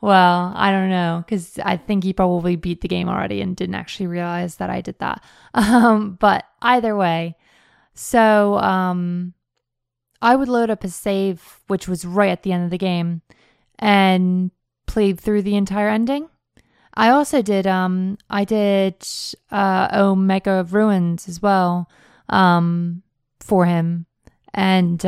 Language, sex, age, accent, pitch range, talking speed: English, female, 20-39, American, 175-205 Hz, 155 wpm